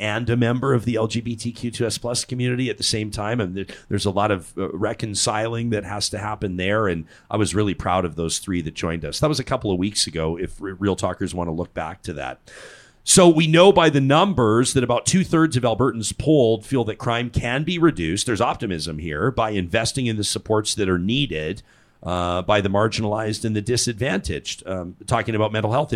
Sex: male